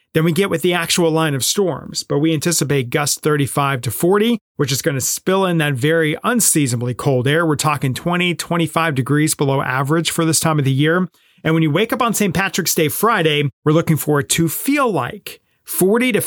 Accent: American